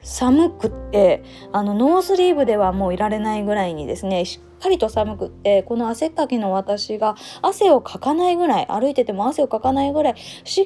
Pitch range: 200-290 Hz